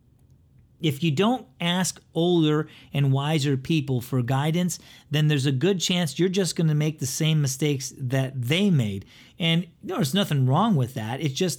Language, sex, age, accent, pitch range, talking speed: English, male, 40-59, American, 130-170 Hz, 180 wpm